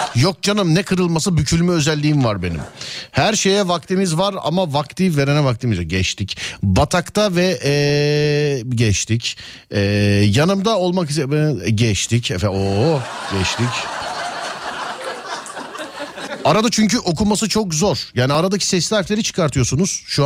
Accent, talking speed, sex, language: native, 120 wpm, male, Turkish